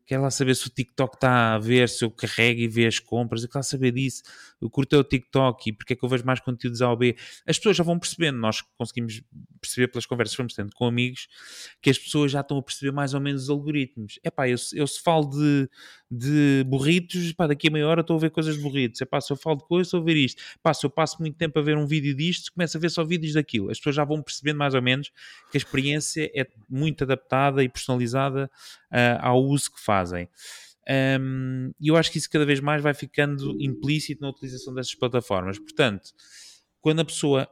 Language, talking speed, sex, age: Portuguese, 240 wpm, male, 20-39